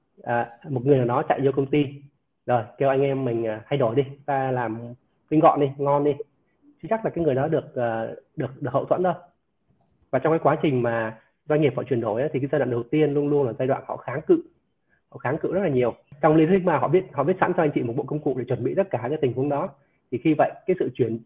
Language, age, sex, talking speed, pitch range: Vietnamese, 20-39, male, 280 wpm, 125-160 Hz